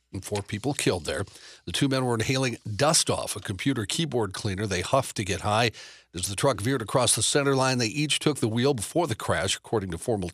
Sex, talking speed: male, 230 wpm